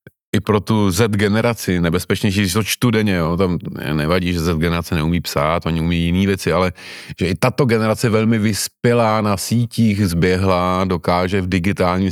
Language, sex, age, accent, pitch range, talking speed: Czech, male, 30-49, native, 85-100 Hz, 175 wpm